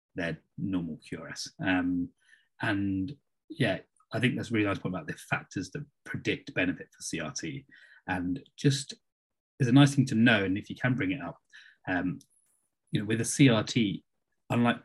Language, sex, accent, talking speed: English, male, British, 175 wpm